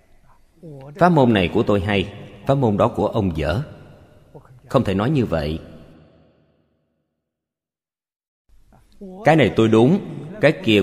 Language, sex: Vietnamese, male